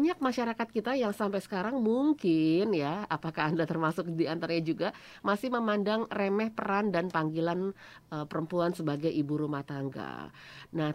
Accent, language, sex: Indonesian, English, female